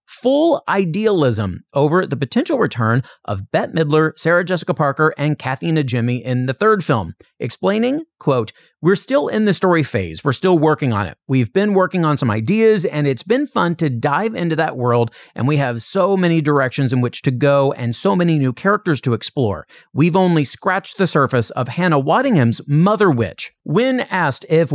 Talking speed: 185 wpm